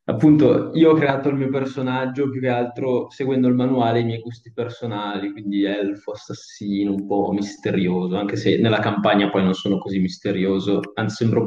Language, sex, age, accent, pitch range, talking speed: Italian, male, 20-39, native, 110-140 Hz, 190 wpm